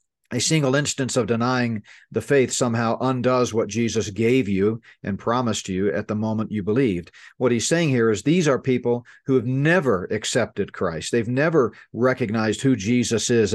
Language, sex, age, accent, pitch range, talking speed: English, male, 50-69, American, 110-140 Hz, 175 wpm